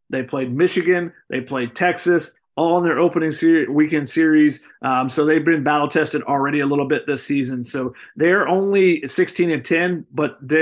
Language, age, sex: English, 30-49, male